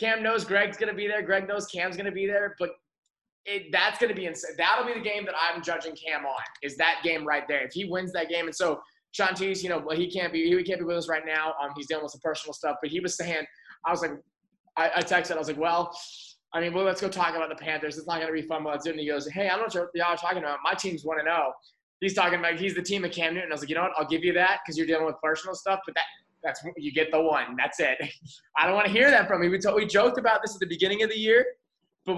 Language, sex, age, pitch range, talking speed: English, male, 20-39, 150-190 Hz, 315 wpm